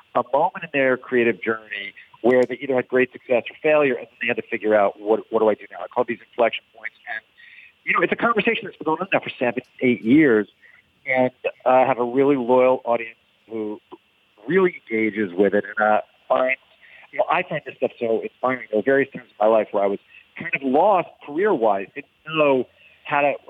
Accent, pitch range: American, 110-145 Hz